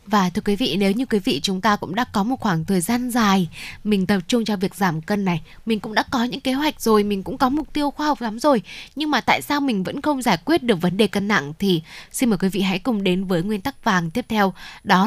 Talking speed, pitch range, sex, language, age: 285 wpm, 190-245 Hz, female, Vietnamese, 10-29